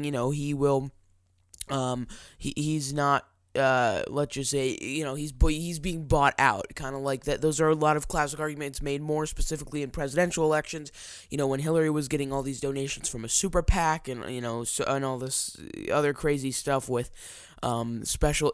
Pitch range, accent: 130-155 Hz, American